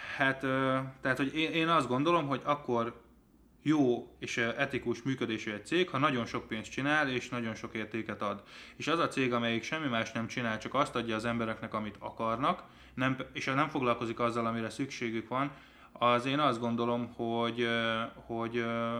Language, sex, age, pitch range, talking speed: Hungarian, male, 20-39, 115-130 Hz, 175 wpm